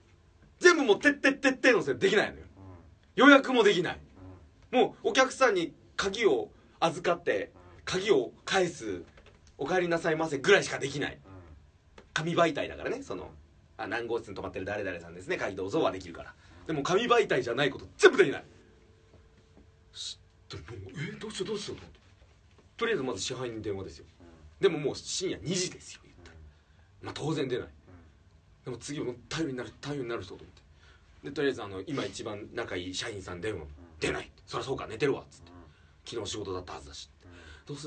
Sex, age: male, 40-59